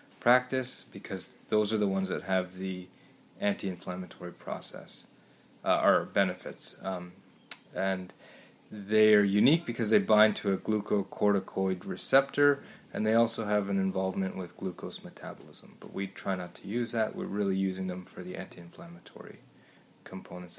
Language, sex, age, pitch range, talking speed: English, male, 20-39, 95-110 Hz, 145 wpm